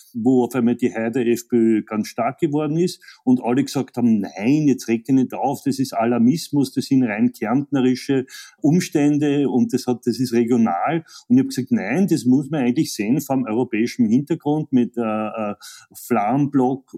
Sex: male